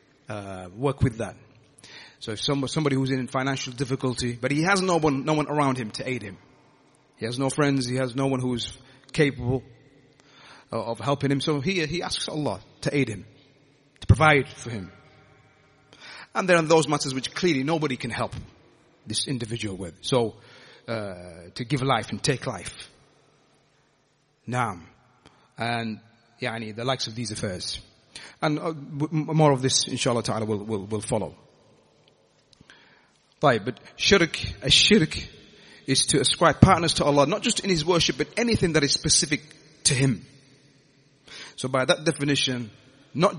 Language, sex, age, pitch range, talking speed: English, male, 30-49, 125-155 Hz, 165 wpm